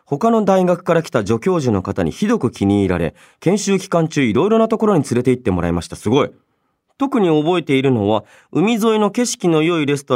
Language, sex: Japanese, male